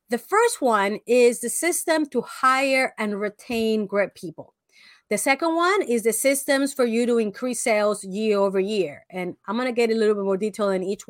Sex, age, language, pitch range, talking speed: female, 30-49, English, 210-280 Hz, 205 wpm